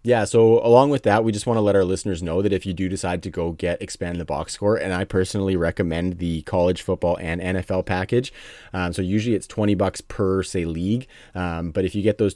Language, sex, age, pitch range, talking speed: English, male, 30-49, 85-100 Hz, 245 wpm